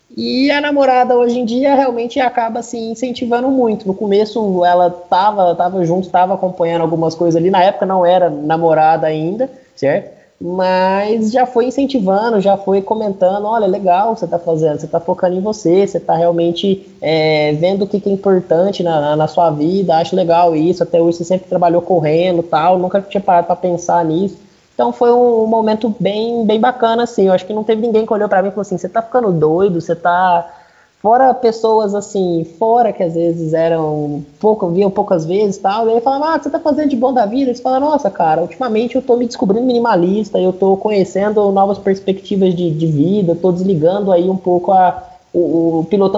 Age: 20-39